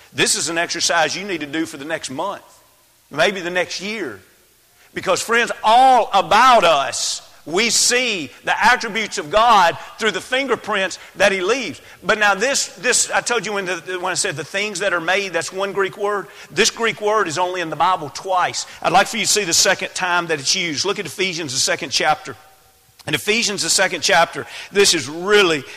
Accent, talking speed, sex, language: American, 205 wpm, male, English